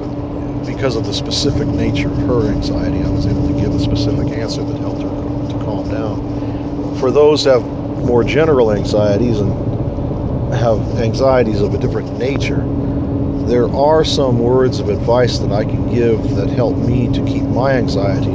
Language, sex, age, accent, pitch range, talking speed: English, male, 50-69, American, 120-140 Hz, 175 wpm